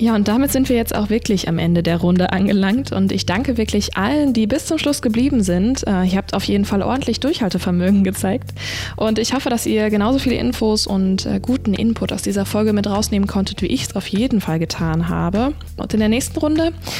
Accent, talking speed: German, 220 wpm